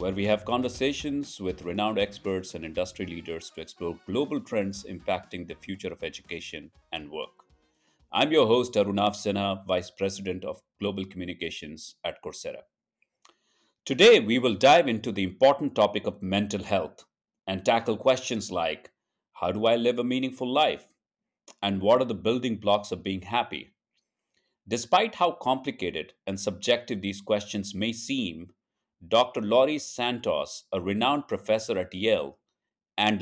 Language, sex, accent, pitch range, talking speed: English, male, Indian, 95-125 Hz, 150 wpm